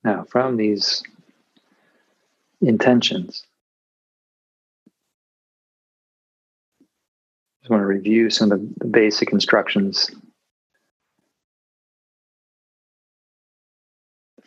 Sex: male